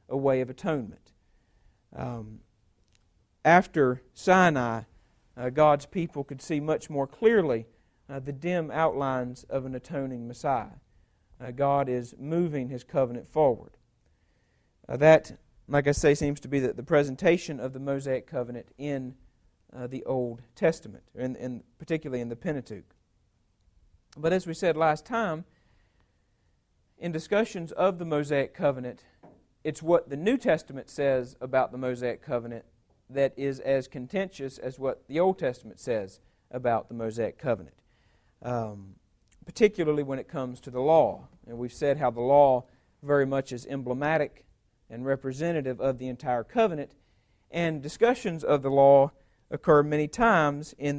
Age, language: 50-69, English